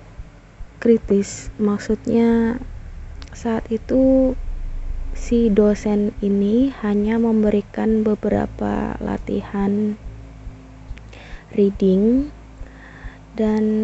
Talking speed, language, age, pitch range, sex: 55 wpm, Indonesian, 20-39, 190-220 Hz, female